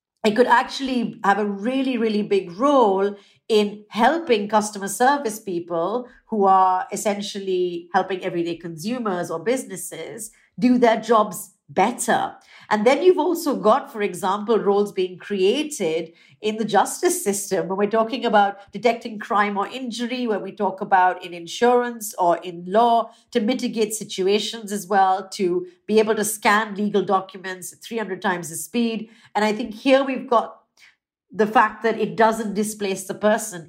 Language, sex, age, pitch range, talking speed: English, female, 50-69, 190-230 Hz, 155 wpm